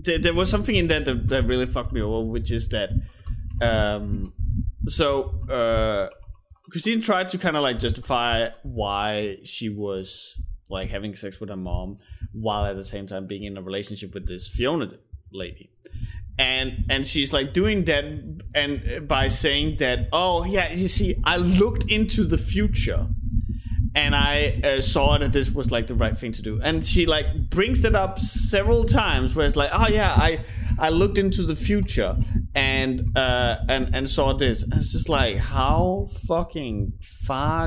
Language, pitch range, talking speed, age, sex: English, 100-130 Hz, 175 wpm, 20-39, male